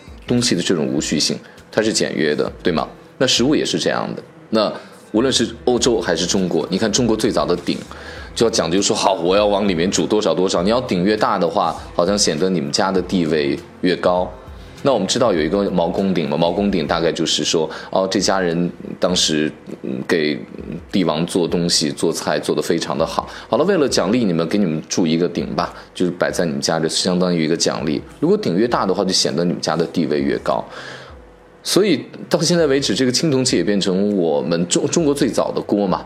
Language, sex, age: Chinese, male, 20-39